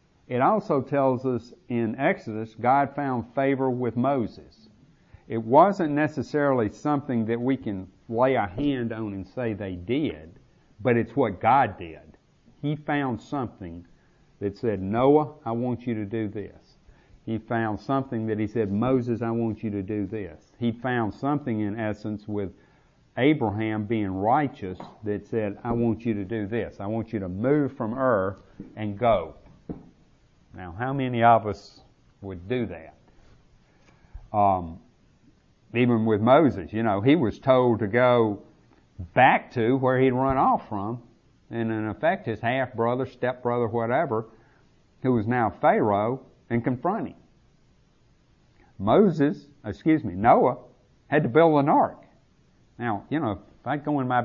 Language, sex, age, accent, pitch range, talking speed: English, male, 50-69, American, 105-130 Hz, 155 wpm